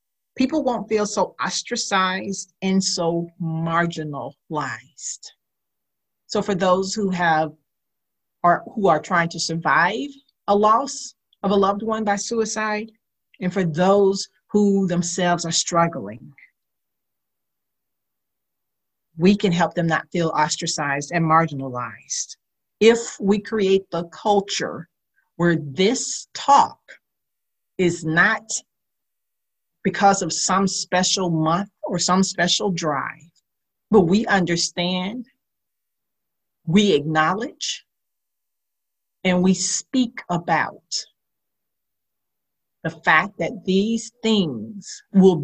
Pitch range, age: 165-205 Hz, 50-69